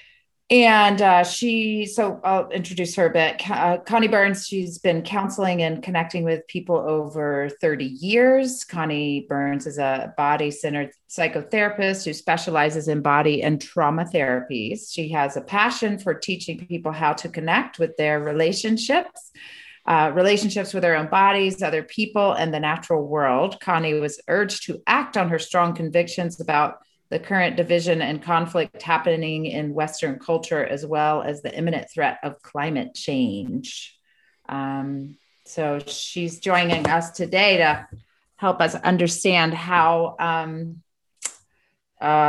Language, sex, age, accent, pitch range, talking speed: English, female, 30-49, American, 150-195 Hz, 145 wpm